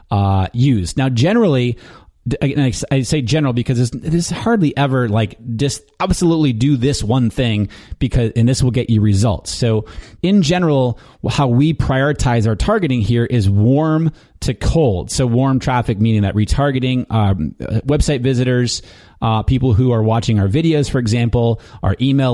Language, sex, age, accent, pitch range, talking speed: English, male, 30-49, American, 110-135 Hz, 160 wpm